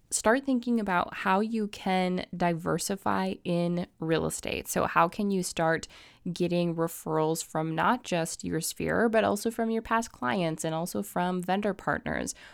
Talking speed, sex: 160 wpm, female